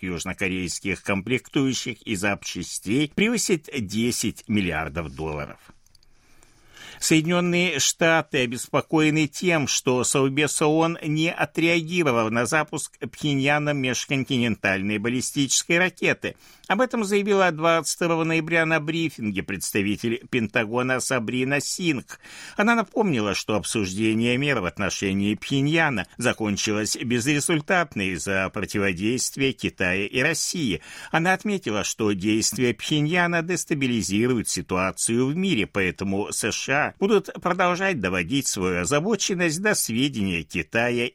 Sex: male